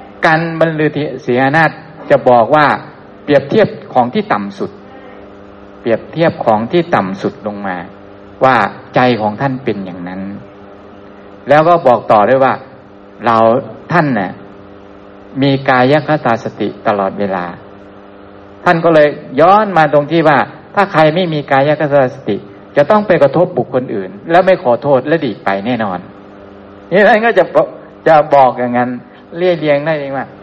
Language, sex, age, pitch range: Thai, male, 60-79, 100-150 Hz